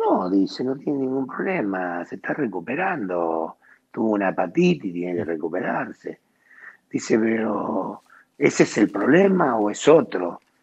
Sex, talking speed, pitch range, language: male, 140 wpm, 125-185 Hz, Spanish